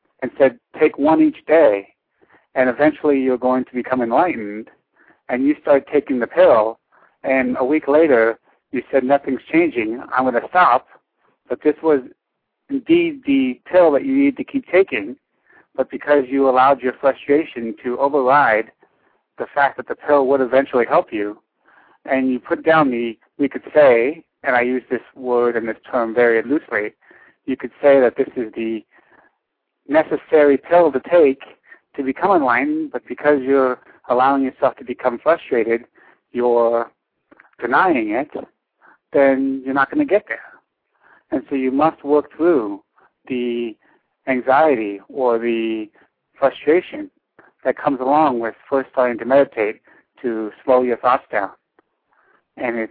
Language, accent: English, American